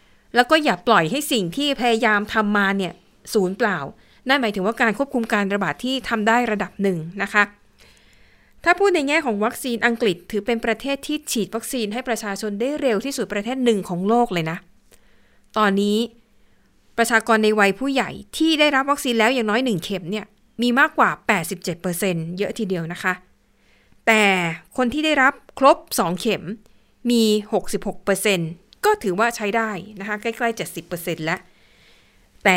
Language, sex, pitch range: Thai, female, 195-245 Hz